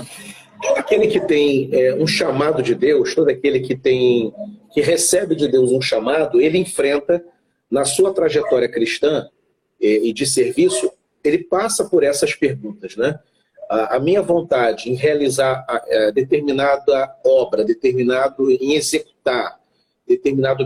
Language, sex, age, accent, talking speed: Portuguese, male, 40-59, Brazilian, 140 wpm